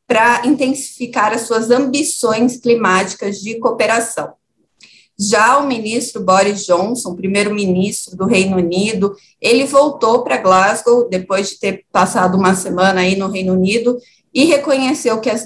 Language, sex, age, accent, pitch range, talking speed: Portuguese, female, 20-39, Brazilian, 195-235 Hz, 135 wpm